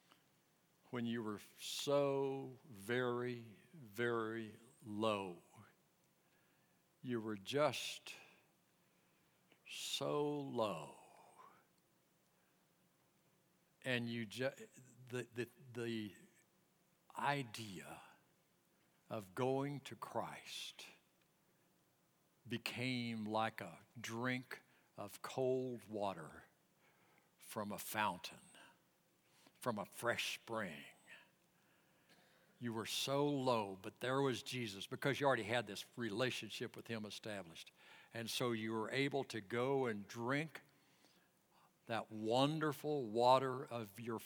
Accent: American